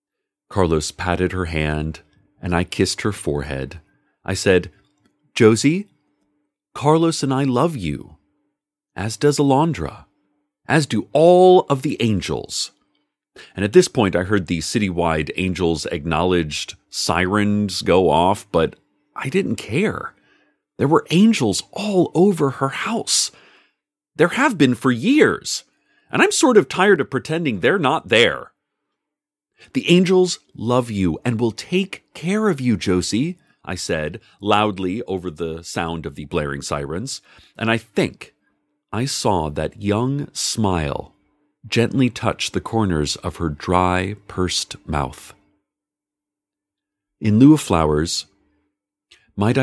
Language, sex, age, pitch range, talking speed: English, male, 40-59, 90-150 Hz, 130 wpm